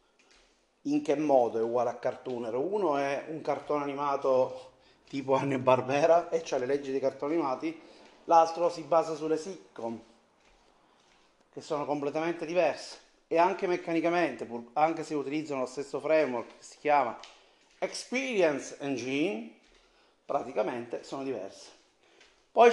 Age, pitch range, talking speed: 30-49, 130-165 Hz, 130 wpm